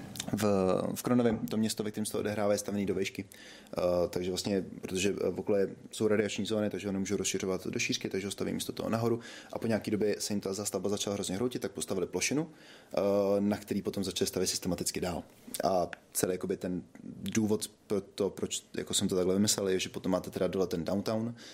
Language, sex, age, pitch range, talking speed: Czech, male, 20-39, 95-120 Hz, 215 wpm